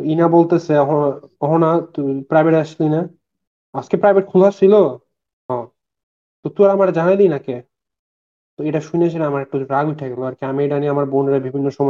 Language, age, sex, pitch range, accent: Bengali, 30-49, male, 135-165 Hz, native